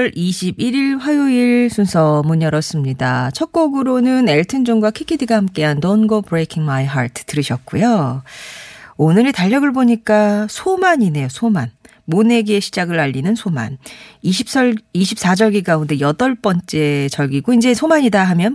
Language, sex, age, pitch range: Korean, female, 40-59, 150-225 Hz